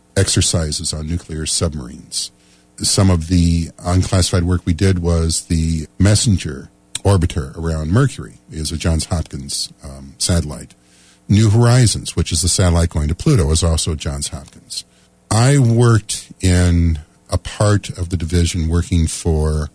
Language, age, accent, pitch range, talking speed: English, 50-69, American, 80-95 Hz, 140 wpm